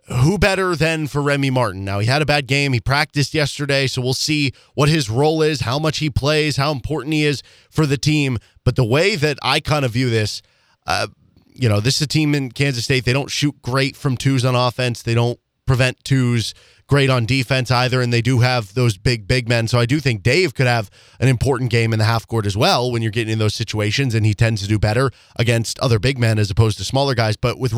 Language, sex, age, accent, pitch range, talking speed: English, male, 20-39, American, 120-150 Hz, 250 wpm